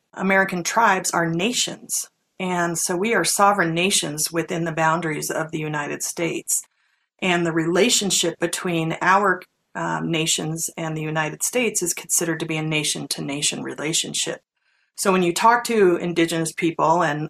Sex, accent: female, American